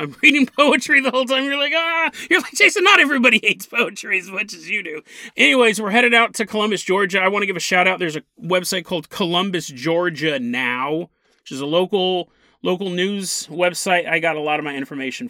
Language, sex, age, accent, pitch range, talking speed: English, male, 30-49, American, 185-275 Hz, 220 wpm